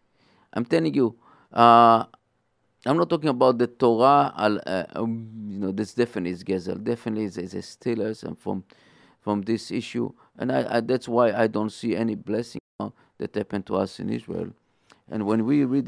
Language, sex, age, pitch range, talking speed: English, male, 50-69, 110-130 Hz, 195 wpm